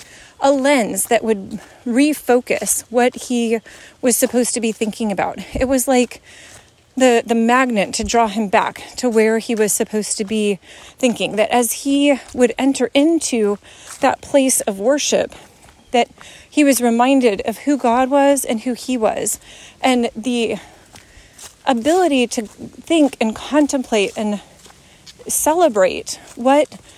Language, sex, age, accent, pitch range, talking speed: English, female, 30-49, American, 225-270 Hz, 140 wpm